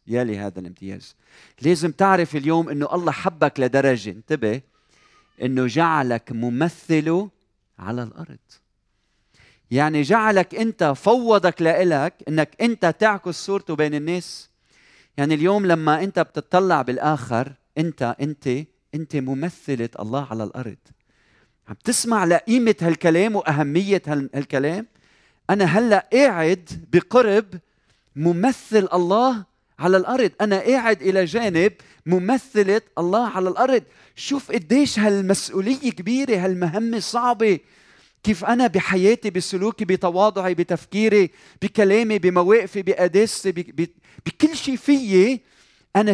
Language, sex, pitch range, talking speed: Arabic, male, 150-215 Hz, 110 wpm